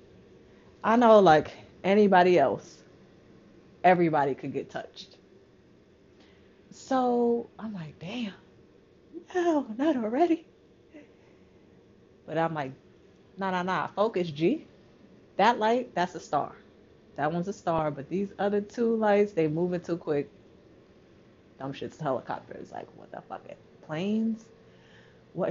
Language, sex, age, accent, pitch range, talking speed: English, female, 30-49, American, 155-220 Hz, 120 wpm